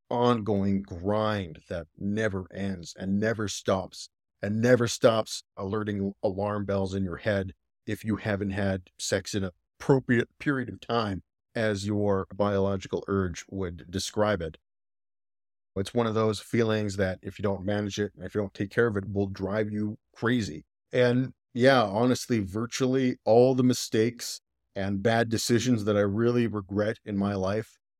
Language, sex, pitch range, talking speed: English, male, 95-110 Hz, 160 wpm